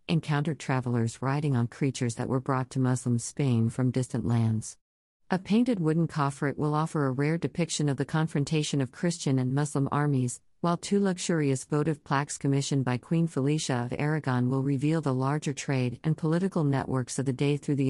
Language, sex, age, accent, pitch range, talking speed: English, female, 50-69, American, 130-155 Hz, 185 wpm